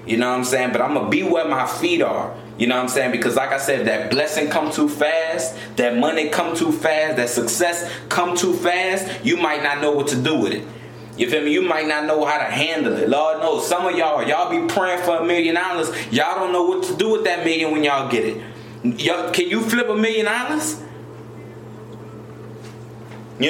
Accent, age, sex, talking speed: American, 20-39, male, 230 wpm